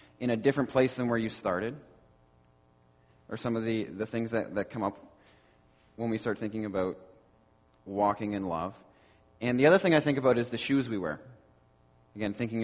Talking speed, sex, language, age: 190 wpm, male, English, 20-39